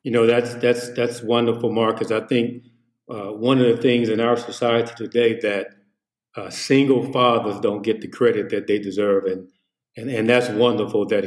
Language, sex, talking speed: English, male, 185 wpm